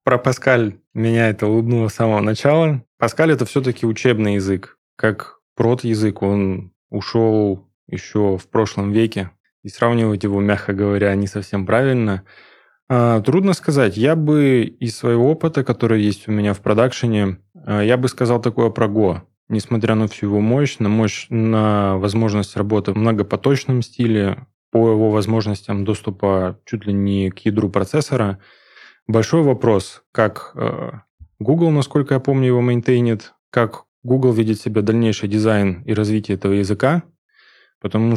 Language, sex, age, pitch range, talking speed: Russian, male, 20-39, 105-130 Hz, 150 wpm